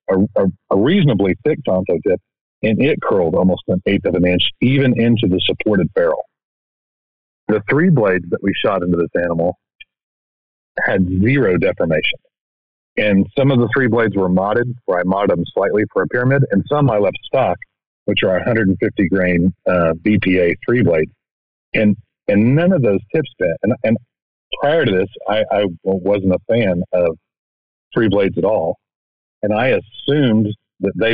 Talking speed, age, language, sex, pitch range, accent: 170 wpm, 40-59, English, male, 90-125 Hz, American